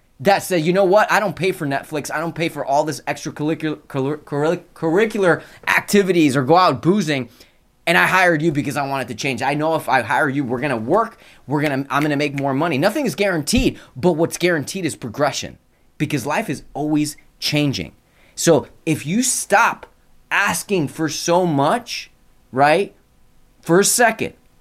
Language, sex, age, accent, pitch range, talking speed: English, male, 20-39, American, 125-175 Hz, 175 wpm